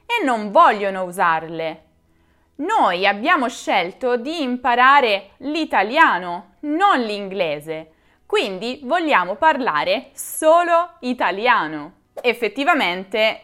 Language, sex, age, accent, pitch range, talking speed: Italian, female, 20-39, native, 195-300 Hz, 80 wpm